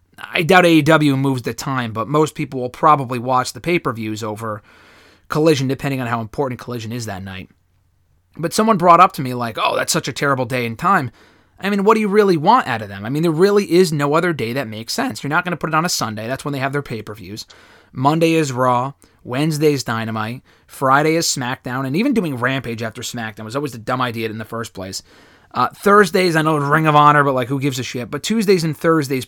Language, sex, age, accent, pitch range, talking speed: English, male, 30-49, American, 120-165 Hz, 235 wpm